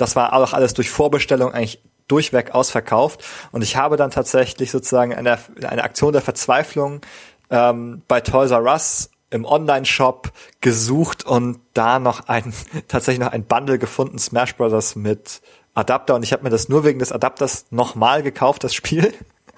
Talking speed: 165 wpm